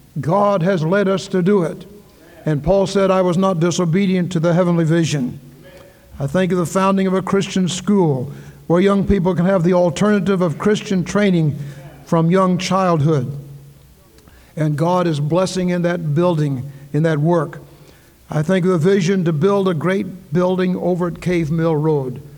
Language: English